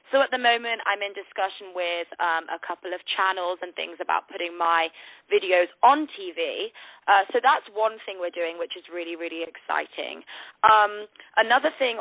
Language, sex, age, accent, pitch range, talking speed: English, female, 20-39, British, 175-215 Hz, 180 wpm